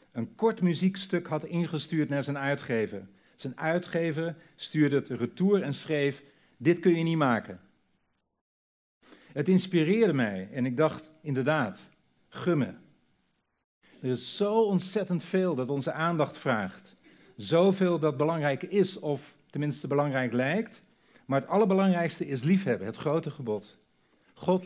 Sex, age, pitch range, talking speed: male, 50-69, 130-175 Hz, 130 wpm